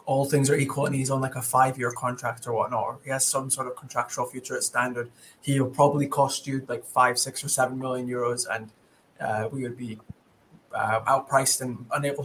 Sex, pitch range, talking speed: male, 125-145 Hz, 210 wpm